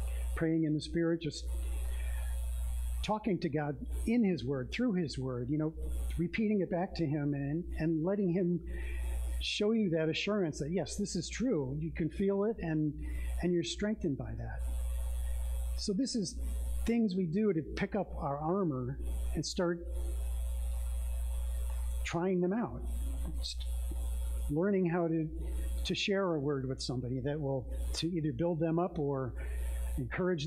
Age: 50-69